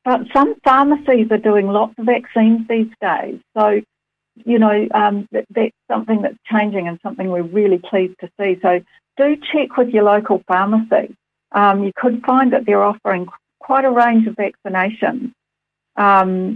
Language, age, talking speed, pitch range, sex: English, 60-79, 165 wpm, 180-225 Hz, female